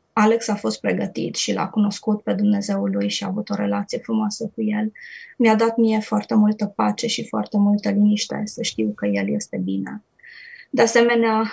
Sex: female